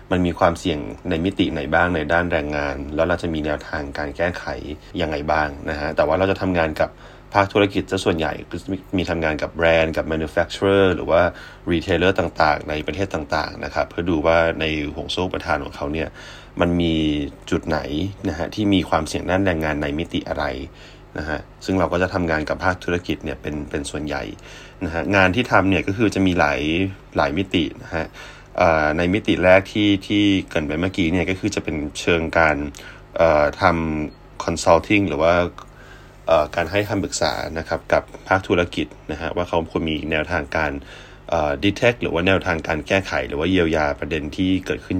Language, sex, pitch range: Thai, male, 80-95 Hz